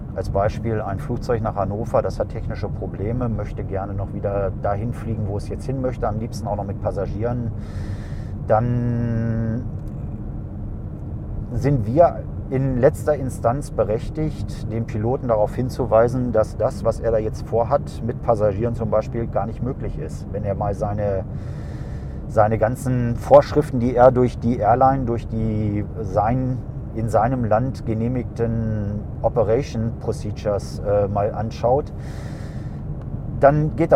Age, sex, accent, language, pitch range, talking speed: 40-59, male, German, German, 105-125 Hz, 140 wpm